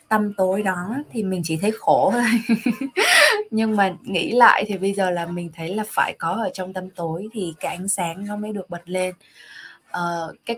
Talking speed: 210 wpm